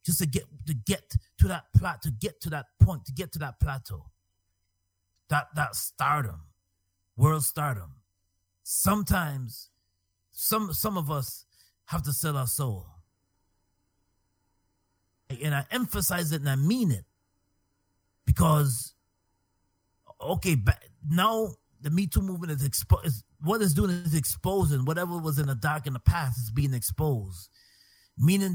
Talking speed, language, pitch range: 145 wpm, English, 95-145 Hz